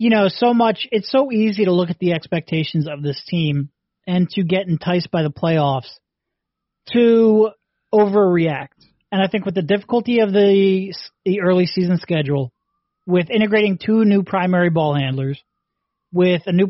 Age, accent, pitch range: 30-49, American, 160-200 Hz